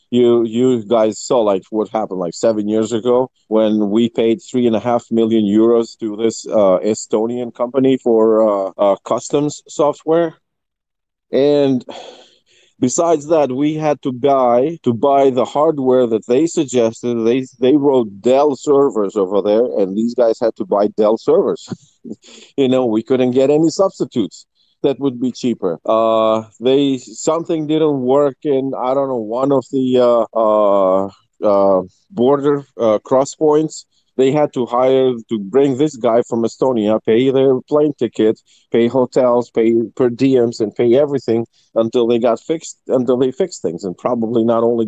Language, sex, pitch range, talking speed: English, male, 110-140 Hz, 165 wpm